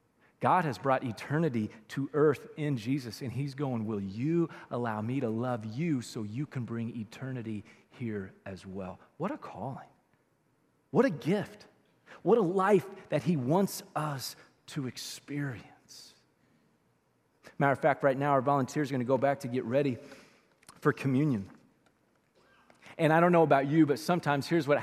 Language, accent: English, American